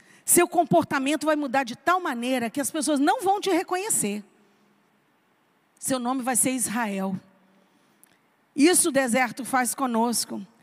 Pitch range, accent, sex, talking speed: 270-365 Hz, Brazilian, female, 135 wpm